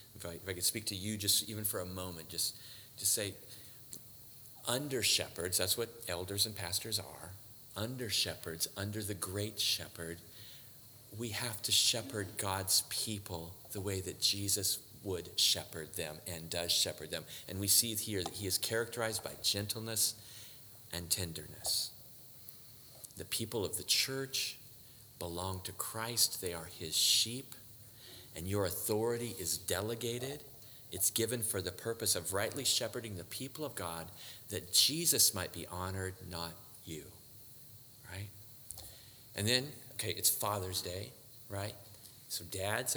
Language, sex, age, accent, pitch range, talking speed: English, male, 40-59, American, 95-120 Hz, 145 wpm